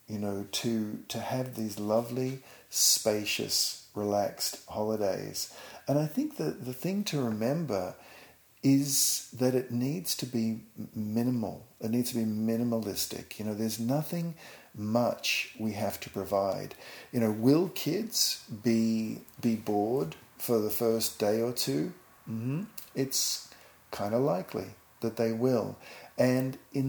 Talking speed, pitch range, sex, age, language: 140 wpm, 100-125 Hz, male, 50-69, English